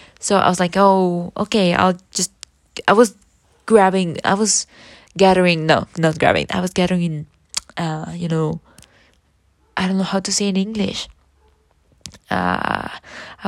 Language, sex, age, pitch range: English, female, 20-39, 170-205 Hz